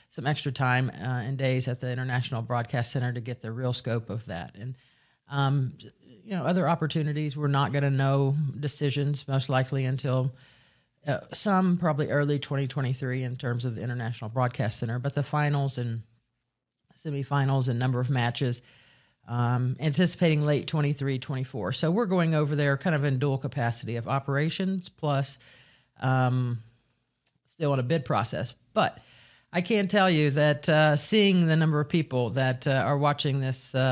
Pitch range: 130-155 Hz